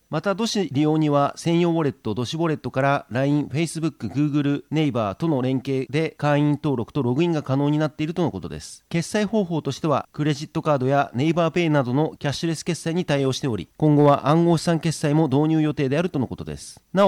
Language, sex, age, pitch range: Japanese, male, 40-59, 130-160 Hz